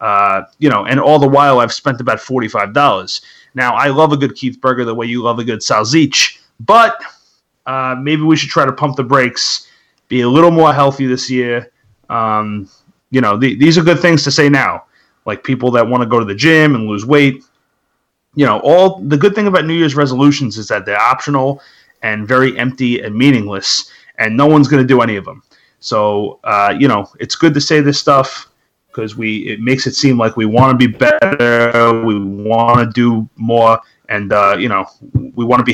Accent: American